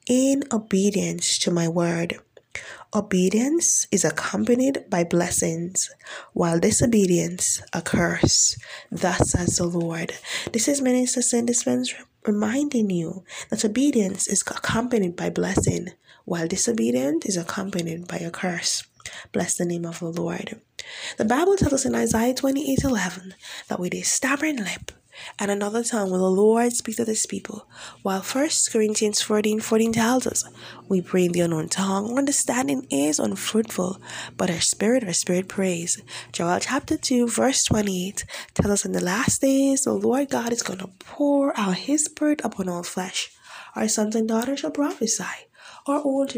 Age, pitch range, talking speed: 10-29, 185-250 Hz, 155 wpm